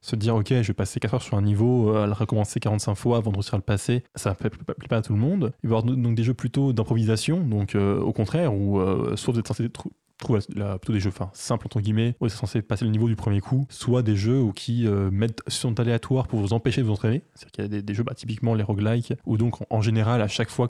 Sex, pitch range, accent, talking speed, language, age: male, 105-125 Hz, French, 290 wpm, French, 20-39